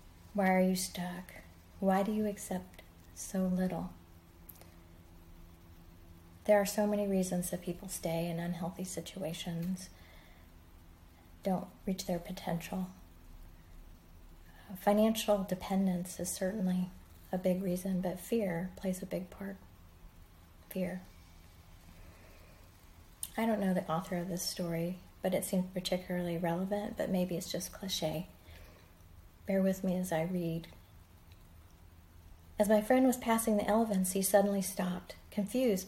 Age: 30-49